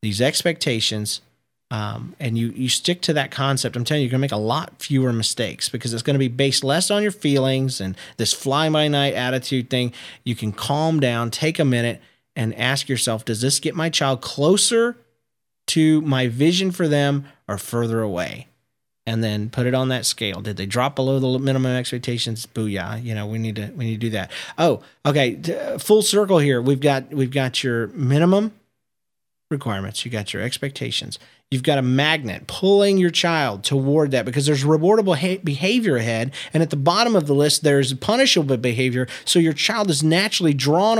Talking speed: 195 wpm